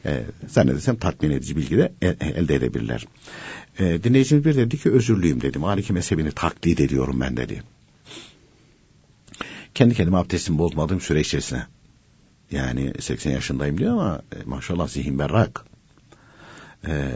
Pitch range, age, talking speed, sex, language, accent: 75-120 Hz, 60-79, 120 wpm, male, Turkish, native